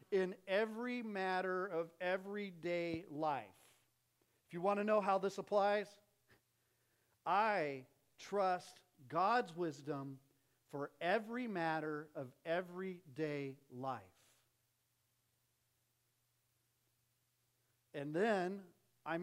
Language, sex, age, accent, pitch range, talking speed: English, male, 50-69, American, 130-200 Hz, 85 wpm